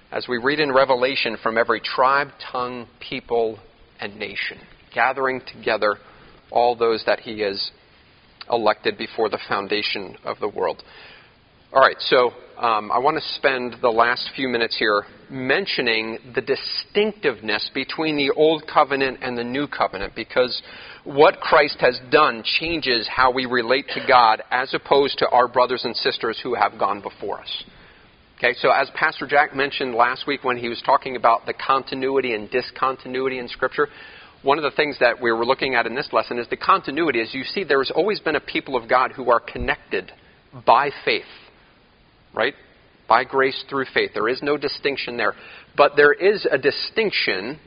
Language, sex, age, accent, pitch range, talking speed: English, male, 40-59, American, 115-145 Hz, 170 wpm